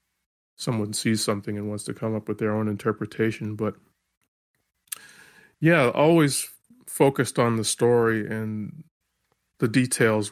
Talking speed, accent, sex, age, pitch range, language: 130 wpm, American, male, 30-49, 110-130 Hz, English